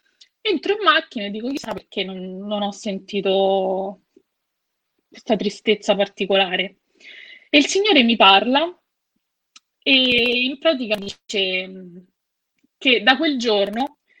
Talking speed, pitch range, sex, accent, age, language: 115 wpm, 205-275 Hz, female, native, 20-39, Italian